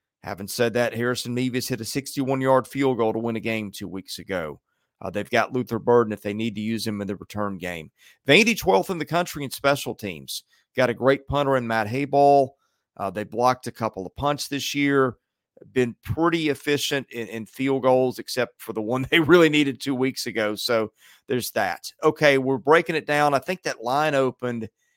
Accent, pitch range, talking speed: American, 115-140 Hz, 210 wpm